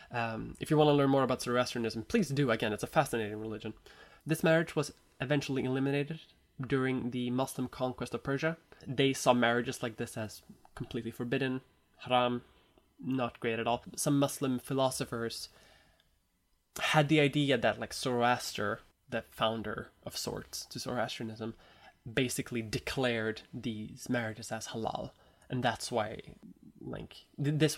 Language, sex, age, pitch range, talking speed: English, male, 20-39, 110-135 Hz, 145 wpm